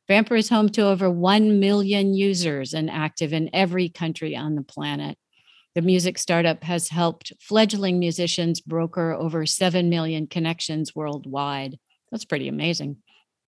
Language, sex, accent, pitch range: English, female, American, 155-185 Hz